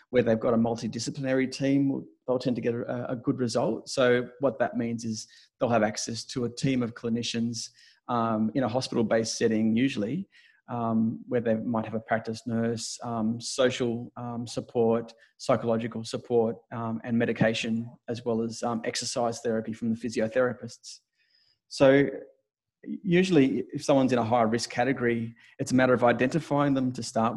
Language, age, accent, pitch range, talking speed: English, 30-49, Australian, 115-125 Hz, 165 wpm